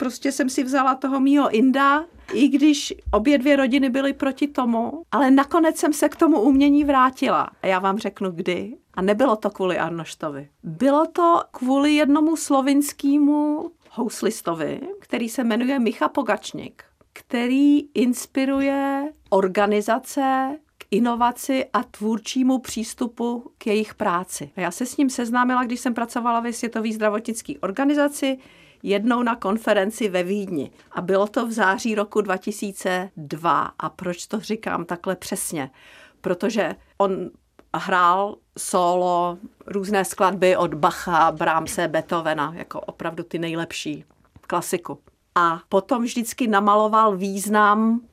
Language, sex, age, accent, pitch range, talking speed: Czech, female, 50-69, native, 185-270 Hz, 130 wpm